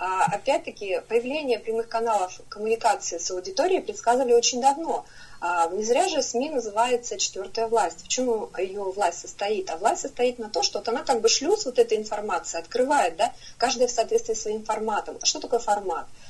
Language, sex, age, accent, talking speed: Russian, female, 30-49, native, 175 wpm